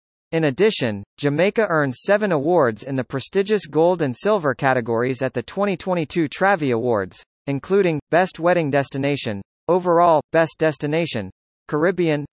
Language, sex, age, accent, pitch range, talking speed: English, male, 40-59, American, 130-180 Hz, 125 wpm